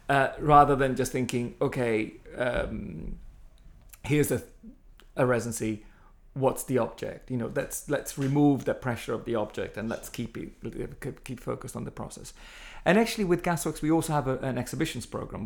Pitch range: 115-140 Hz